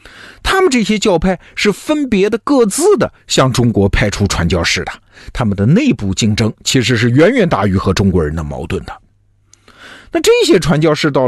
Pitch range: 105-175 Hz